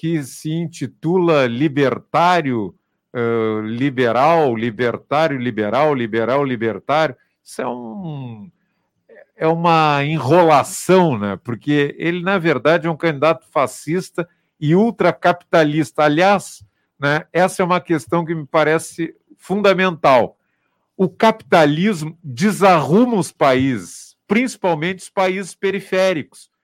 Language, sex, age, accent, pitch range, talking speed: Portuguese, male, 50-69, Brazilian, 145-190 Hz, 105 wpm